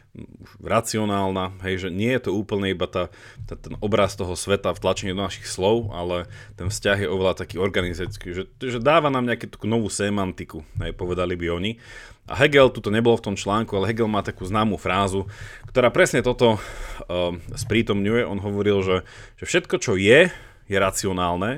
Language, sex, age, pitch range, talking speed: Slovak, male, 30-49, 95-115 Hz, 185 wpm